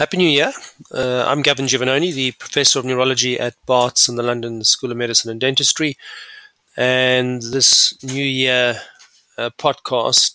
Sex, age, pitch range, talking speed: male, 30-49, 120-140 Hz, 155 wpm